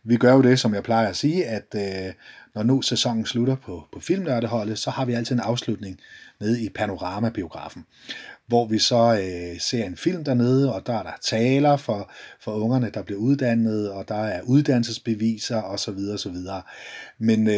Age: 30-49